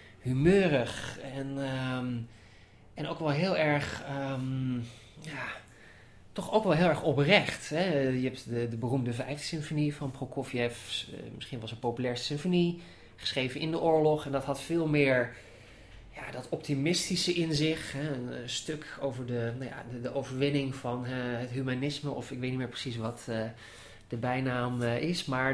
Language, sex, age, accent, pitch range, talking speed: English, male, 20-39, Dutch, 120-155 Hz, 170 wpm